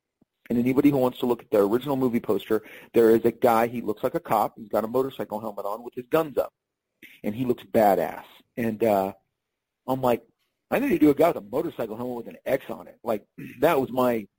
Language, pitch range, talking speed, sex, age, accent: English, 110-130 Hz, 240 wpm, male, 40-59, American